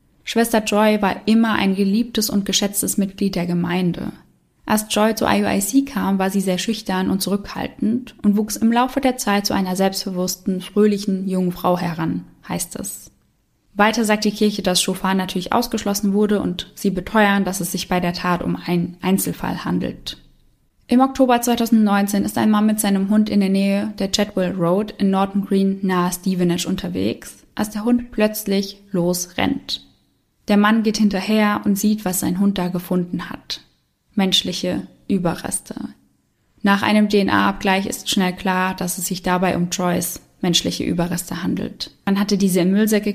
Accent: German